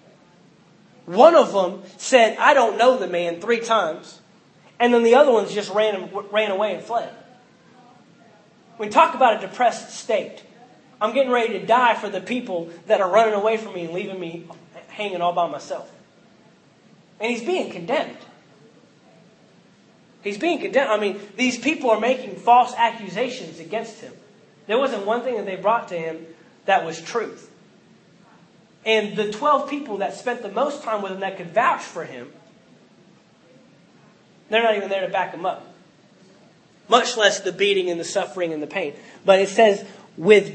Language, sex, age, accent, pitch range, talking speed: English, male, 30-49, American, 190-235 Hz, 170 wpm